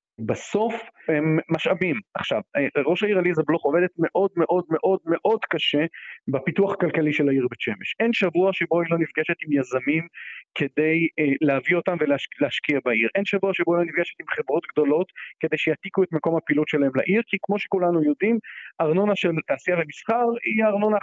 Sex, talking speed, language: male, 165 wpm, Hebrew